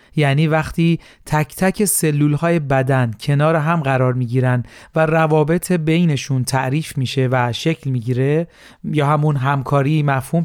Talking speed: 140 wpm